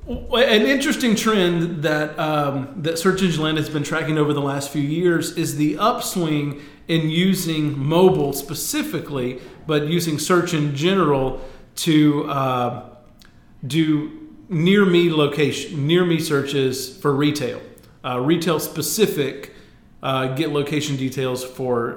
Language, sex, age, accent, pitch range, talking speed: English, male, 40-59, American, 135-165 Hz, 130 wpm